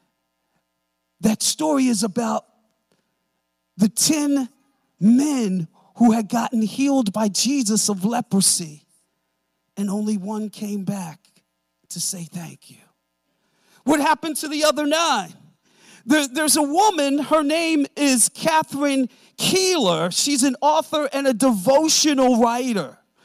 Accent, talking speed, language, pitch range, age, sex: American, 120 wpm, English, 215-290 Hz, 40-59, male